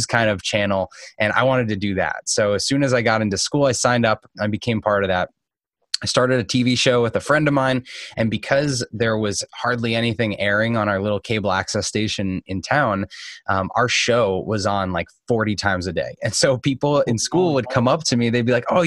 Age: 20-39